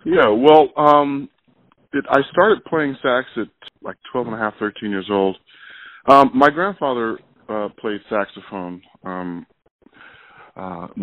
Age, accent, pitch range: 20-39, American, 95-120 Hz